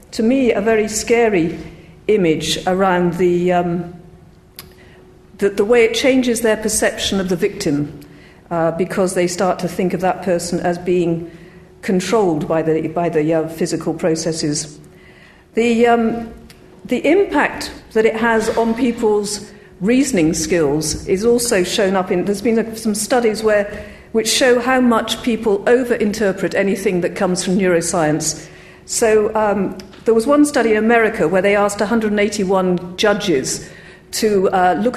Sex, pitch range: female, 180-225 Hz